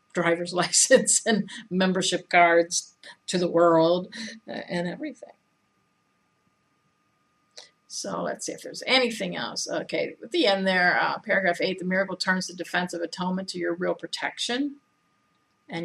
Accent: American